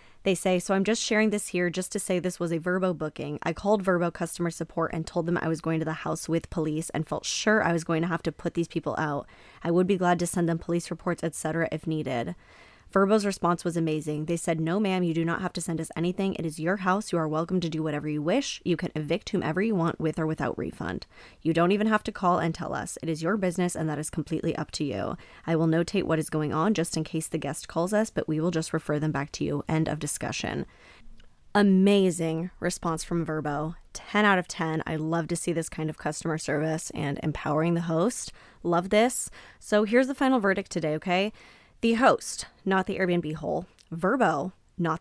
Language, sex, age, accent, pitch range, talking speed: English, female, 10-29, American, 160-200 Hz, 240 wpm